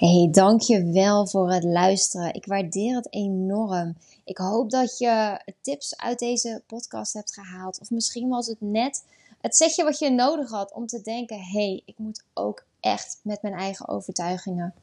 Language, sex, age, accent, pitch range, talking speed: Dutch, female, 20-39, Dutch, 190-240 Hz, 180 wpm